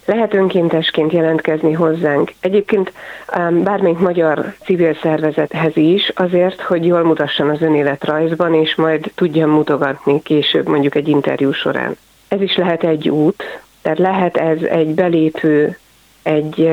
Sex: female